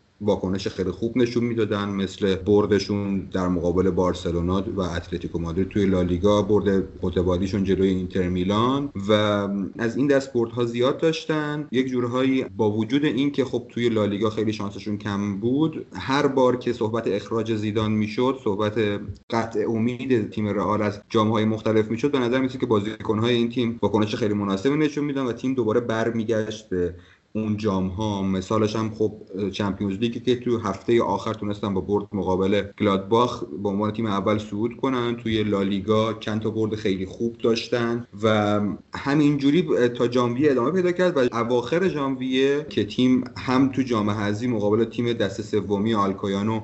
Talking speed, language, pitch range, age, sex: 160 wpm, Persian, 100-120 Hz, 30-49, male